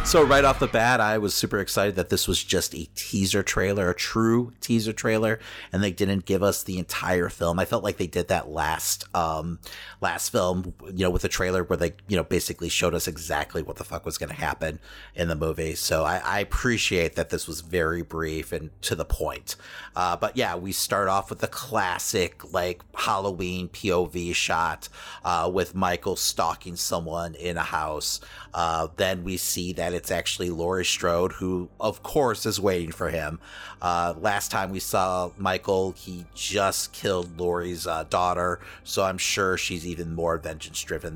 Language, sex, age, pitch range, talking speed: English, male, 30-49, 85-105 Hz, 190 wpm